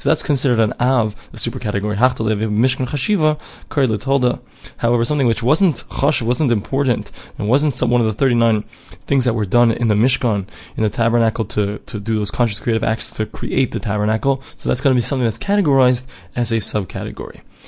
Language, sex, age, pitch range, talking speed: English, male, 20-39, 110-130 Hz, 180 wpm